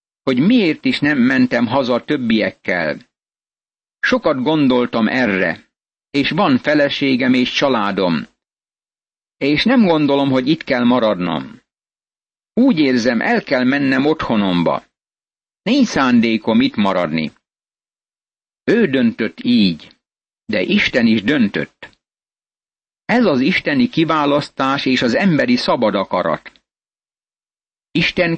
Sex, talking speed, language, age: male, 105 wpm, Hungarian, 60-79